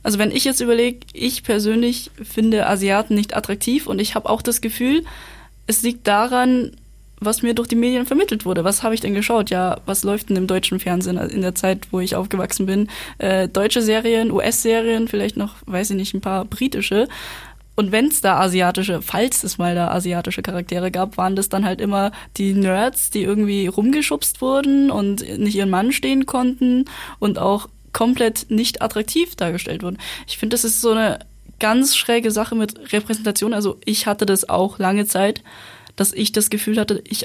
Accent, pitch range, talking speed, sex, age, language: German, 190-230 Hz, 190 wpm, female, 10-29, German